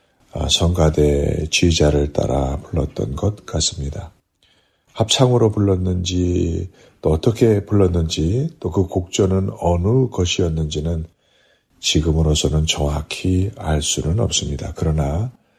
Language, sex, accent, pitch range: Korean, male, native, 75-100 Hz